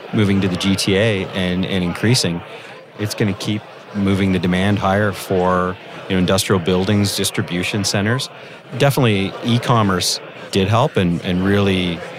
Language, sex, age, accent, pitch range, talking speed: English, male, 30-49, American, 90-105 Hz, 135 wpm